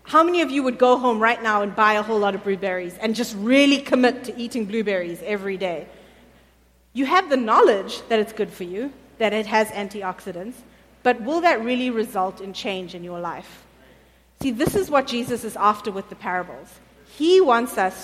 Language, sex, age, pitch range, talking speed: English, female, 30-49, 190-245 Hz, 205 wpm